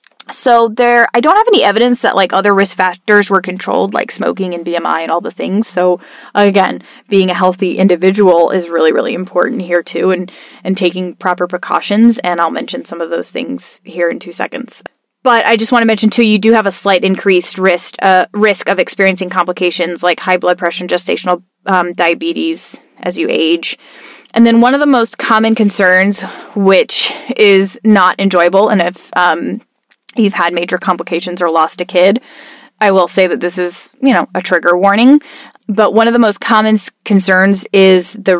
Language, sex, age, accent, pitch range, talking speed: English, female, 20-39, American, 180-220 Hz, 190 wpm